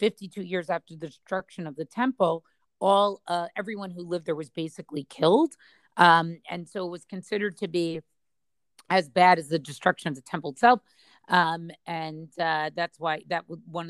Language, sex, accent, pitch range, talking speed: English, female, American, 160-195 Hz, 180 wpm